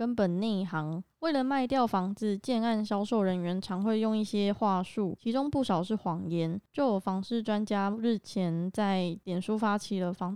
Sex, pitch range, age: female, 190-225 Hz, 20-39